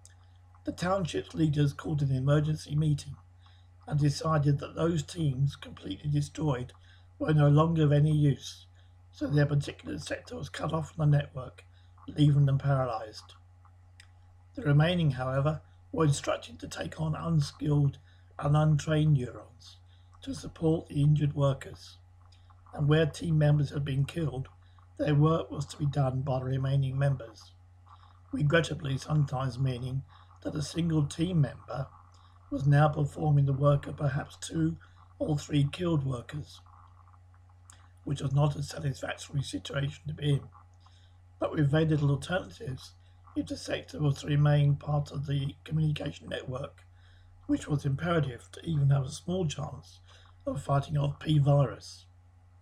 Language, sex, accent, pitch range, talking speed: English, male, British, 90-150 Hz, 145 wpm